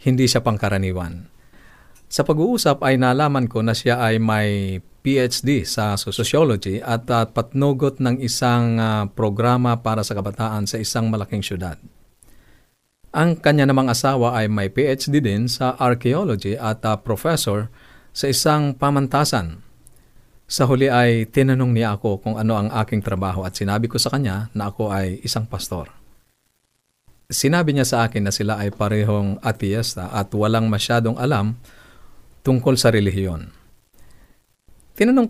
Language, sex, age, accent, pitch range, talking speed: Filipino, male, 40-59, native, 105-130 Hz, 140 wpm